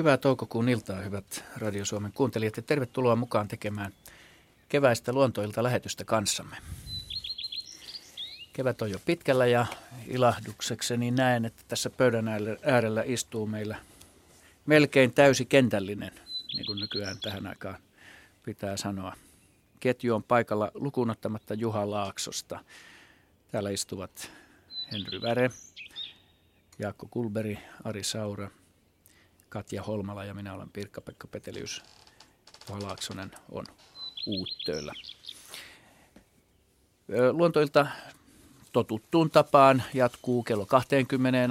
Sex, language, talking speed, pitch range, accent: male, Finnish, 95 wpm, 100-125 Hz, native